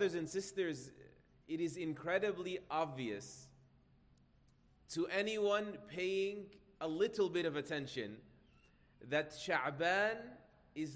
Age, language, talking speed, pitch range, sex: 30-49, English, 100 wpm, 160-205 Hz, male